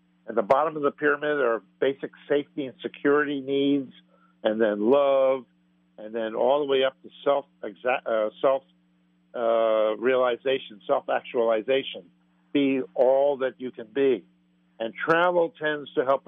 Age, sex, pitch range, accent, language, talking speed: 60-79, male, 90-135 Hz, American, English, 145 wpm